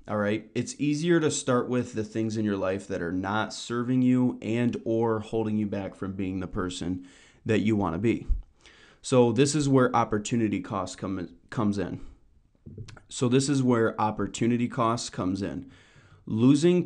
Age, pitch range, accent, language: 20-39, 100-120 Hz, American, English